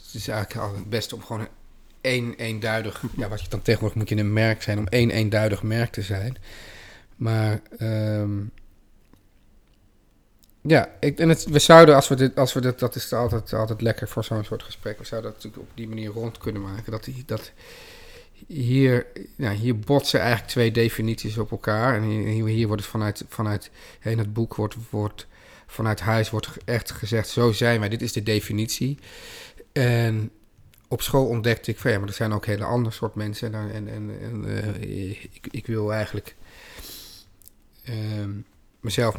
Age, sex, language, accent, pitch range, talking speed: 40-59, male, Dutch, Dutch, 105-120 Hz, 185 wpm